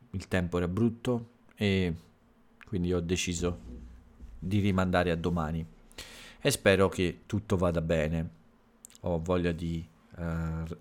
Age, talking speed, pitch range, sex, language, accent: 40-59, 120 wpm, 85-100 Hz, male, Italian, native